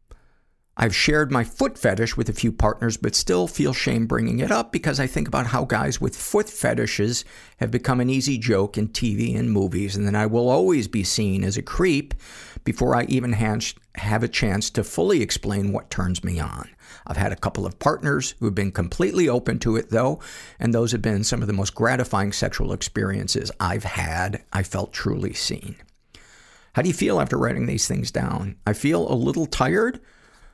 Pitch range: 100-125 Hz